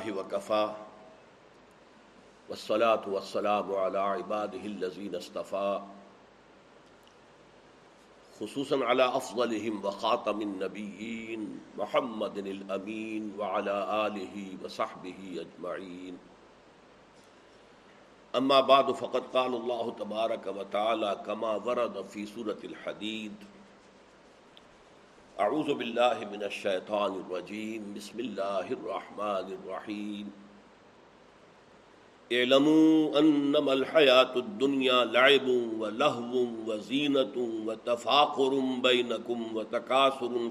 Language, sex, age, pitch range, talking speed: Urdu, male, 50-69, 105-130 Hz, 75 wpm